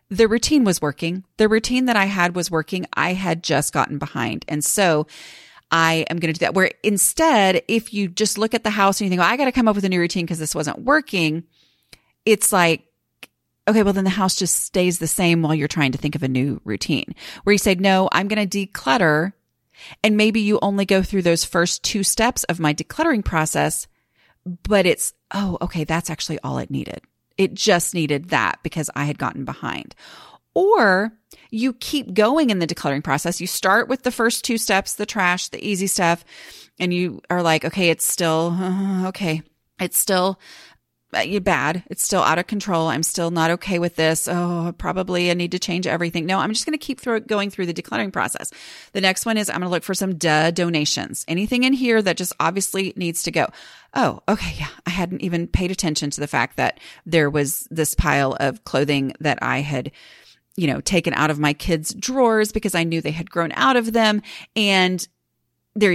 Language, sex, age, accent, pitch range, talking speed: English, female, 30-49, American, 160-205 Hz, 210 wpm